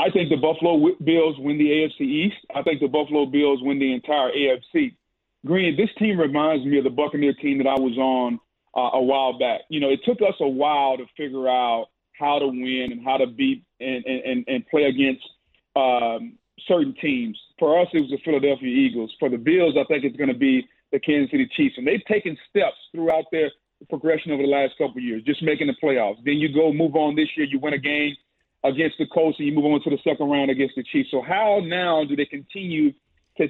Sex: male